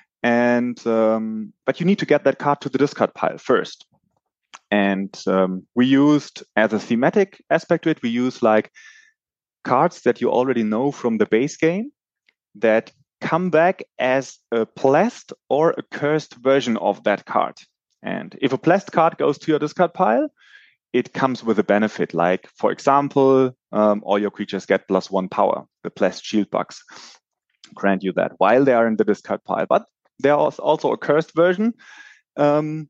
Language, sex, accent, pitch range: English, male, German, 110-165 Hz